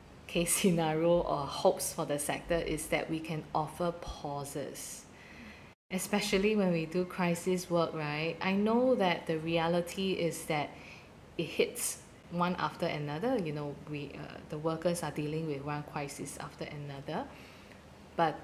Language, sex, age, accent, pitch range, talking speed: English, female, 20-39, Malaysian, 155-185 Hz, 150 wpm